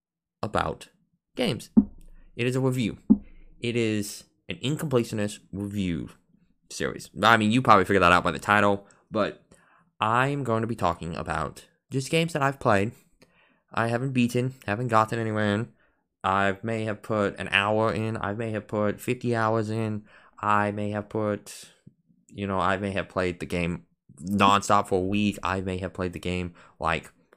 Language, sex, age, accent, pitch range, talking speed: English, male, 20-39, American, 95-115 Hz, 170 wpm